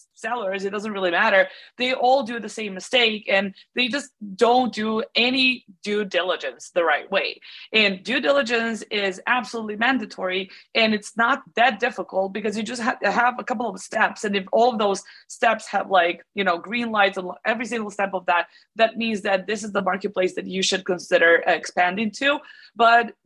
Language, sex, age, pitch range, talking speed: English, female, 20-39, 190-230 Hz, 195 wpm